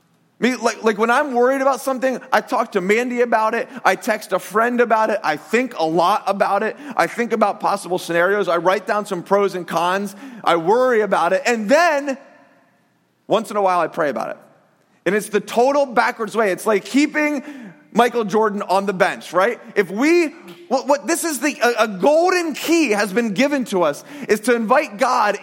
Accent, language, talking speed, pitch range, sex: American, English, 205 wpm, 195-255 Hz, male